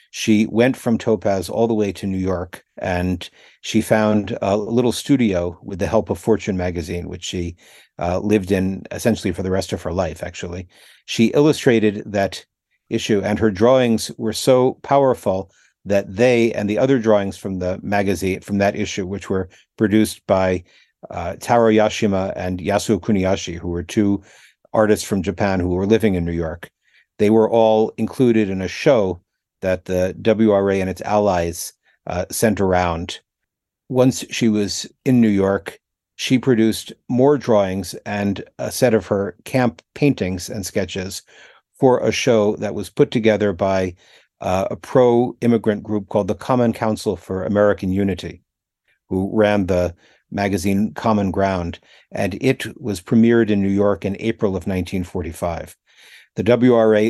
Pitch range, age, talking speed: 95-110 Hz, 50-69, 160 wpm